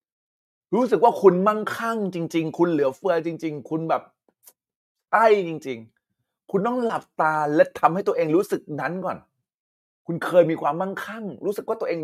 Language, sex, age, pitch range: Thai, male, 30-49, 140-210 Hz